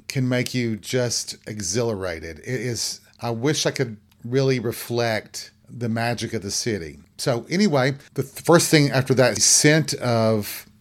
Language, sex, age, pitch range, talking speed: English, male, 40-59, 110-135 Hz, 155 wpm